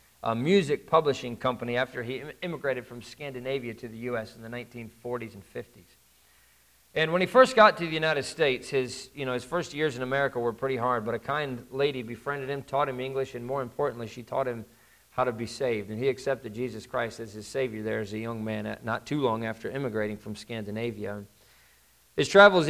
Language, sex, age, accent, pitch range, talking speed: English, male, 50-69, American, 115-140 Hz, 210 wpm